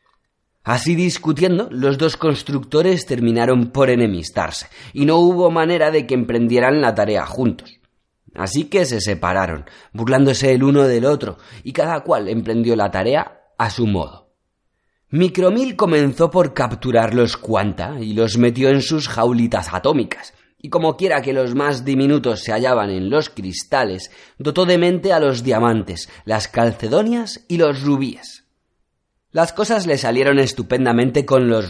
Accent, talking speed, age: Spanish, 150 wpm, 30-49